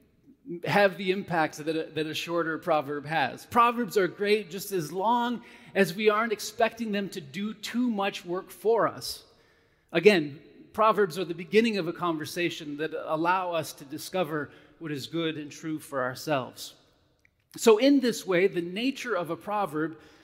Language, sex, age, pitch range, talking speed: English, male, 30-49, 155-210 Hz, 165 wpm